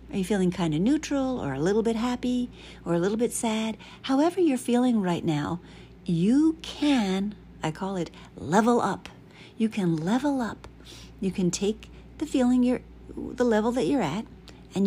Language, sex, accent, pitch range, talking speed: English, female, American, 175-245 Hz, 180 wpm